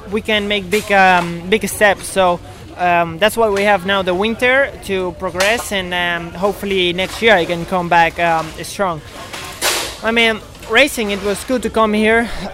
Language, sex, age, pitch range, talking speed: English, male, 20-39, 180-215 Hz, 175 wpm